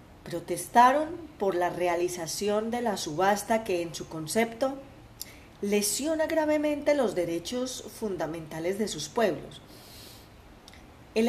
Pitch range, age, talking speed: 180-255 Hz, 30-49, 105 wpm